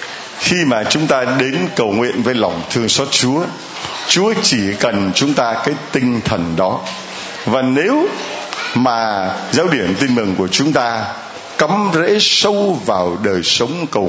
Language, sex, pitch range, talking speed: Vietnamese, male, 115-160 Hz, 160 wpm